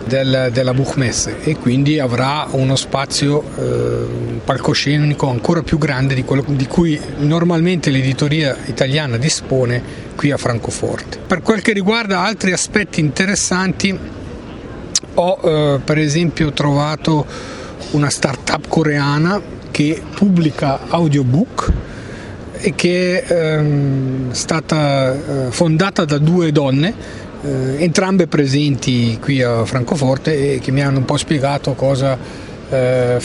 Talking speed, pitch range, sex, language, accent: 110 wpm, 135-180 Hz, male, Italian, native